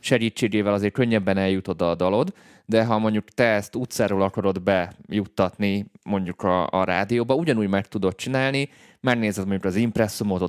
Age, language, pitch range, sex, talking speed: 20-39, Hungarian, 95-115 Hz, male, 150 wpm